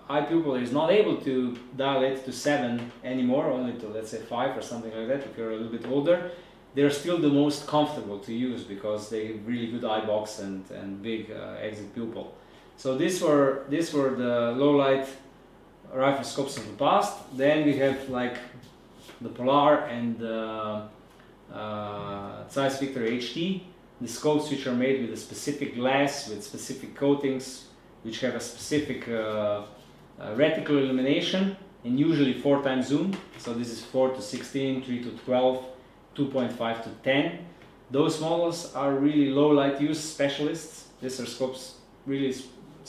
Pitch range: 120-145 Hz